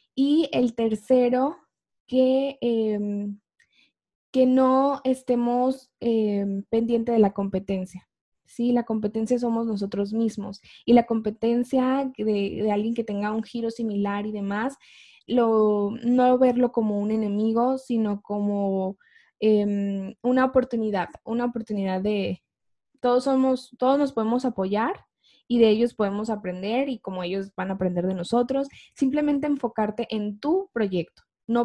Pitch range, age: 205-250 Hz, 10-29